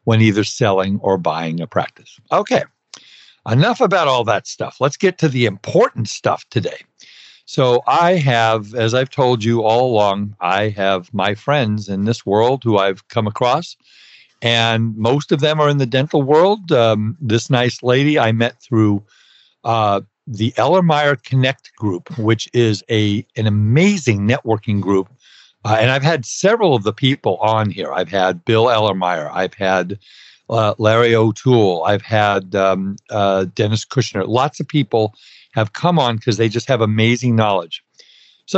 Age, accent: 50-69, American